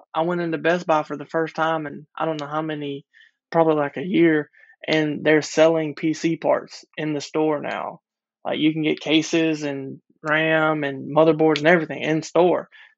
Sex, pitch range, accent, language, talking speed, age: male, 145-165 Hz, American, English, 190 wpm, 20-39